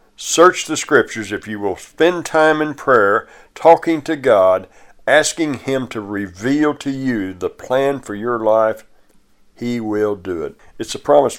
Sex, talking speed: male, 165 wpm